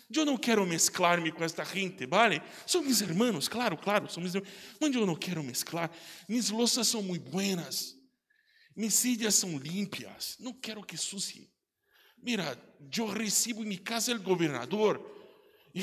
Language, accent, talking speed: Spanish, Brazilian, 160 wpm